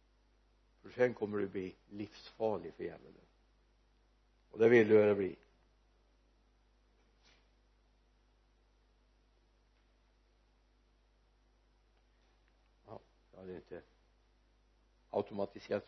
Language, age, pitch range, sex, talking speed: Swedish, 60-79, 110-150 Hz, male, 75 wpm